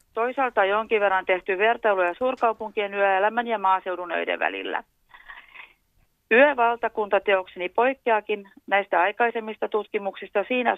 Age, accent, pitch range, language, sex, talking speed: 40-59, native, 190-225 Hz, Finnish, female, 95 wpm